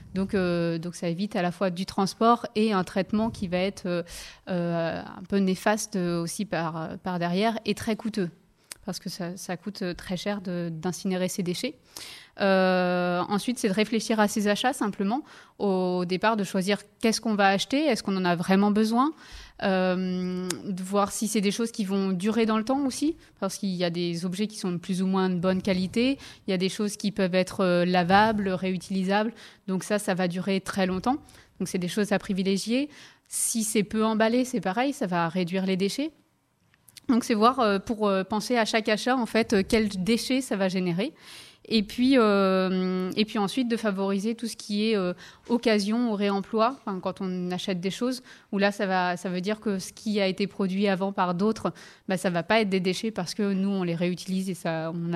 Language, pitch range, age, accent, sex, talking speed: French, 185-220 Hz, 20-39, French, female, 210 wpm